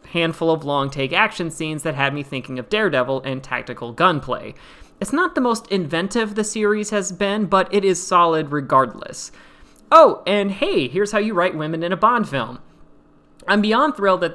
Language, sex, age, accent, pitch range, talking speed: English, male, 30-49, American, 140-190 Hz, 180 wpm